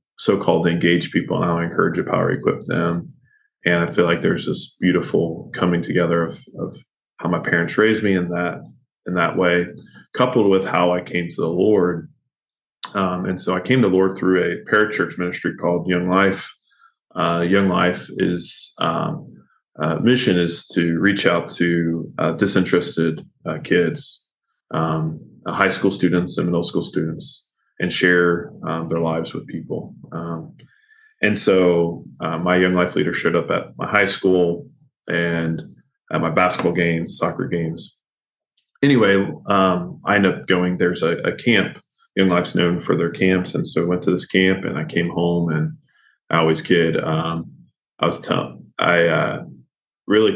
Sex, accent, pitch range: male, American, 85-95 Hz